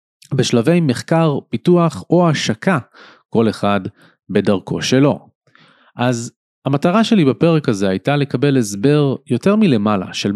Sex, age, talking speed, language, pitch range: male, 30-49, 115 wpm, Hebrew, 95-145 Hz